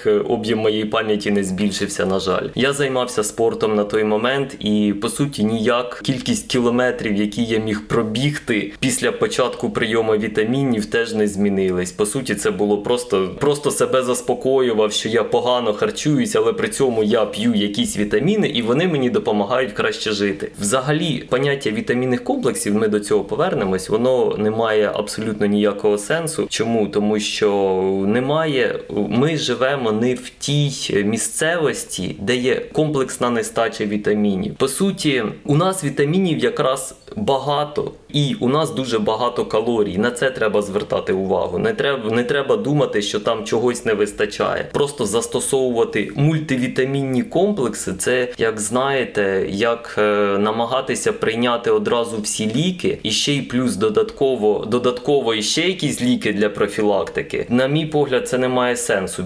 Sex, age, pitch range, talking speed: male, 20-39, 105-135 Hz, 145 wpm